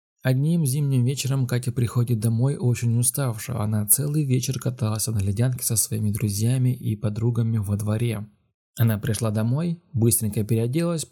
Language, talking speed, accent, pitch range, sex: Russian, 140 wpm, native, 105-130 Hz, male